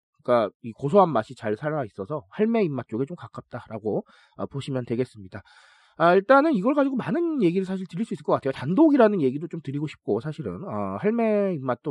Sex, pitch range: male, 135-215 Hz